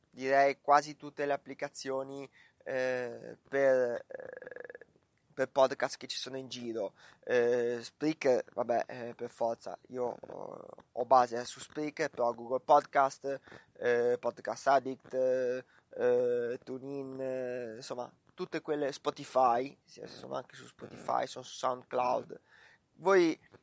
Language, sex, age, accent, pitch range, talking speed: Italian, male, 20-39, native, 130-155 Hz, 115 wpm